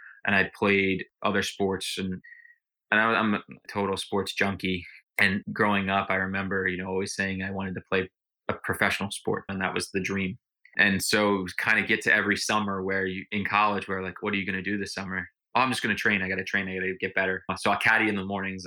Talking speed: 255 wpm